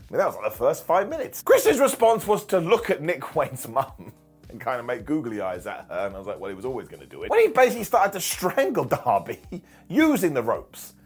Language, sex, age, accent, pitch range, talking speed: English, male, 30-49, British, 145-225 Hz, 260 wpm